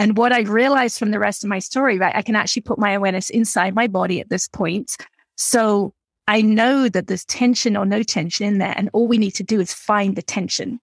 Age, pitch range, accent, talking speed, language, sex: 30-49, 200-235 Hz, British, 245 wpm, English, female